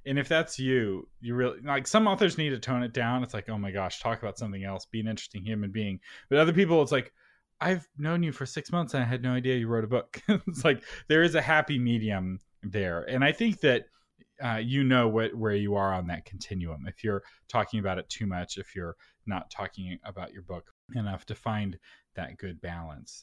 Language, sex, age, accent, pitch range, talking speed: English, male, 30-49, American, 105-135 Hz, 230 wpm